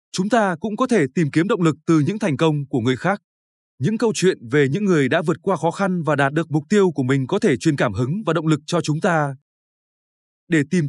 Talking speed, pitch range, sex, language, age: 260 wpm, 140-190 Hz, male, Vietnamese, 20-39